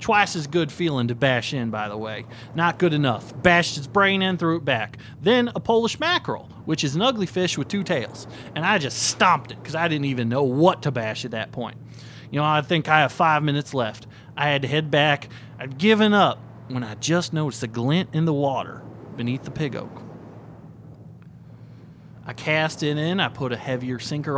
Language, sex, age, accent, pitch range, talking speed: English, male, 30-49, American, 125-175 Hz, 215 wpm